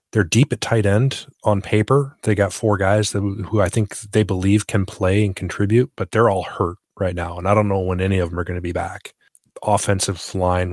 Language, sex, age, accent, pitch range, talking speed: English, male, 30-49, American, 90-105 Hz, 240 wpm